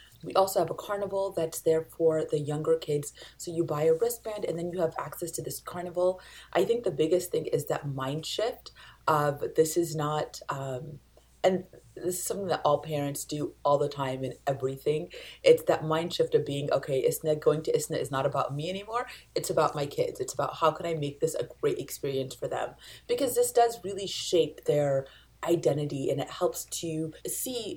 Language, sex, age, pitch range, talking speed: English, female, 30-49, 150-185 Hz, 205 wpm